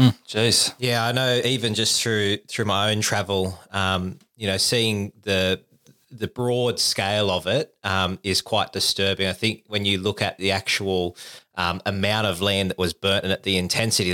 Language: English